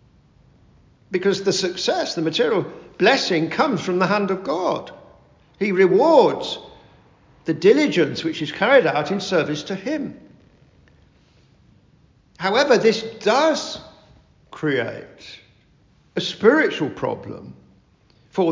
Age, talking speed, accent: 50-69, 105 wpm, British